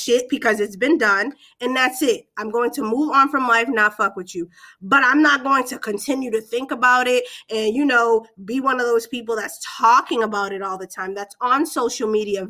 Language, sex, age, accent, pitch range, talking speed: English, female, 20-39, American, 215-275 Hz, 230 wpm